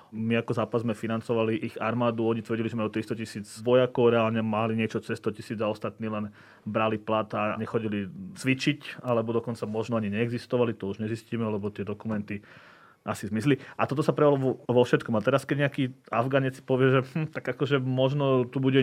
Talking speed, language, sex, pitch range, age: 185 wpm, Slovak, male, 110-125 Hz, 30-49